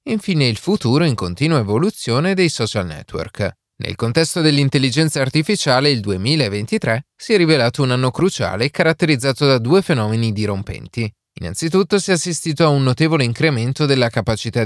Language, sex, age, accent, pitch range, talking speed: Italian, male, 30-49, native, 110-155 Hz, 145 wpm